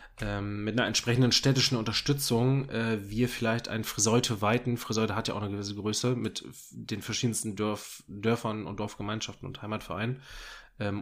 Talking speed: 160 wpm